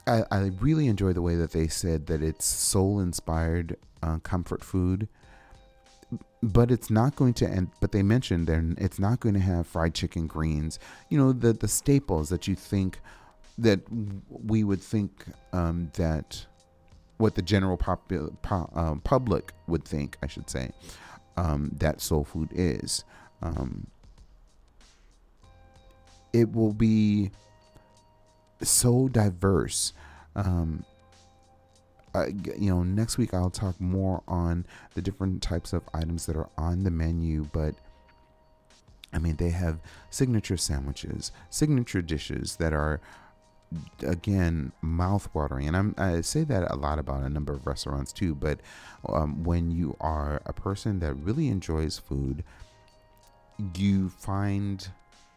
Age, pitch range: 30-49, 80-100 Hz